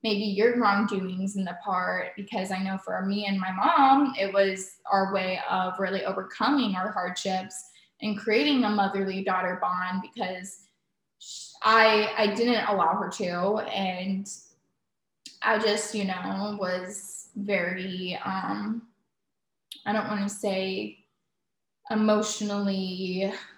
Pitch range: 190-220 Hz